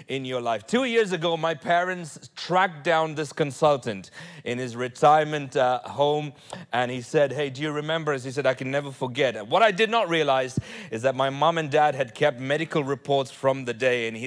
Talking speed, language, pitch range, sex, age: 205 wpm, English, 110-145 Hz, male, 30-49